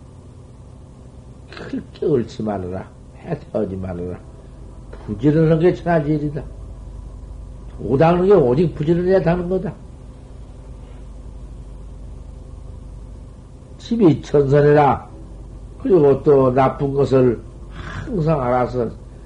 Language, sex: Korean, male